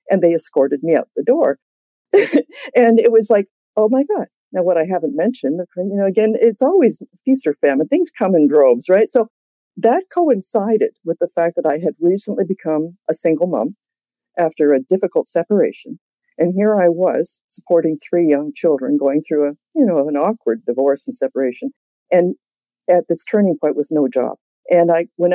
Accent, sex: American, female